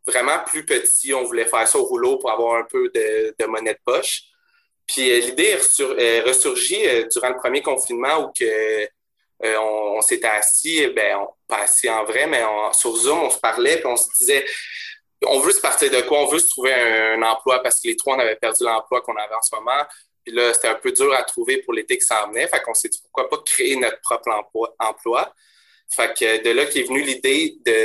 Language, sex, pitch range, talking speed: French, male, 345-445 Hz, 240 wpm